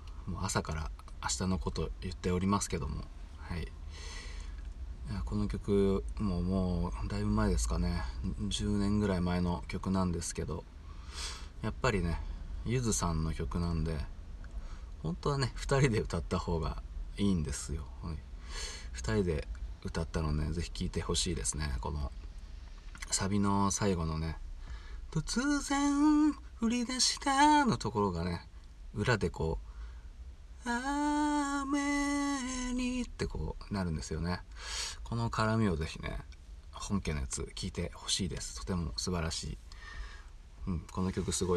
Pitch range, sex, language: 70-100 Hz, male, Japanese